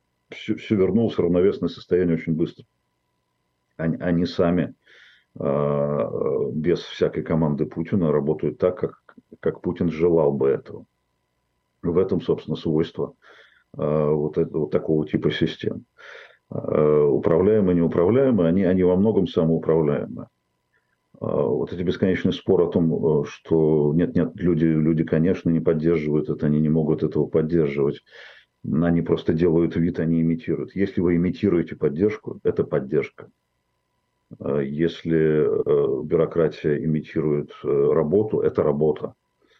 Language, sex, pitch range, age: Russian, male, 75-85 Hz, 50-69